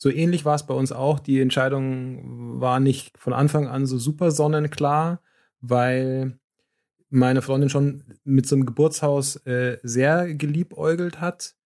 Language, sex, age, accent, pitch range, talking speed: German, male, 30-49, German, 125-140 Hz, 150 wpm